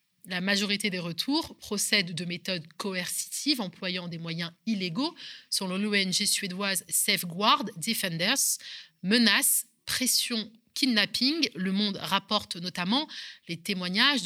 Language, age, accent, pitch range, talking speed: French, 30-49, French, 175-230 Hz, 110 wpm